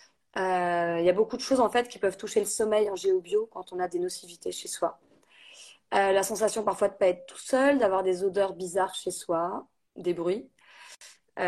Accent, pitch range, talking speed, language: French, 180-230 Hz, 220 wpm, French